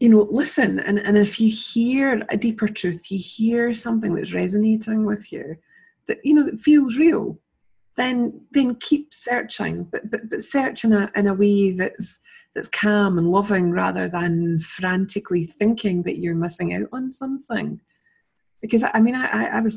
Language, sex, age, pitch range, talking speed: English, female, 30-49, 175-235 Hz, 175 wpm